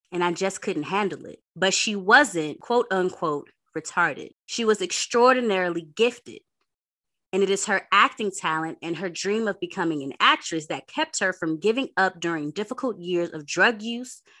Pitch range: 170-225 Hz